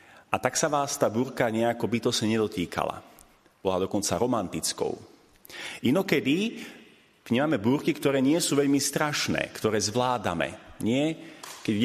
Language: Slovak